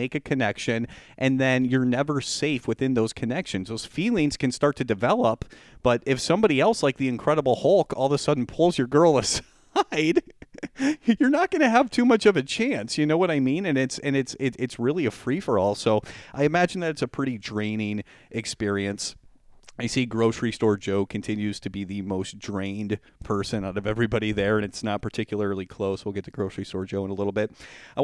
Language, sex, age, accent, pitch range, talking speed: English, male, 30-49, American, 110-150 Hz, 210 wpm